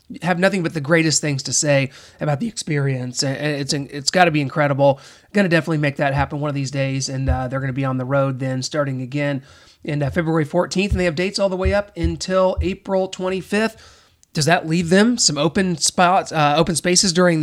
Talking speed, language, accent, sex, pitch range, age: 225 wpm, English, American, male, 145-185 Hz, 30-49